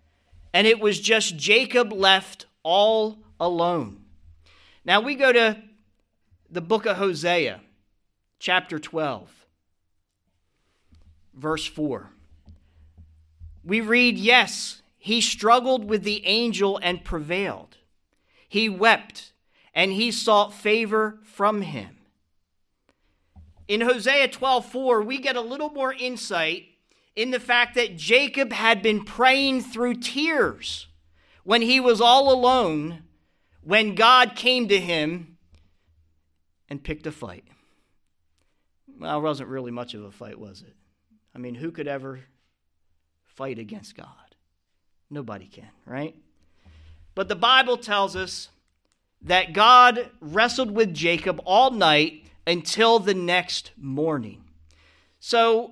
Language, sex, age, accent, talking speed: English, male, 40-59, American, 120 wpm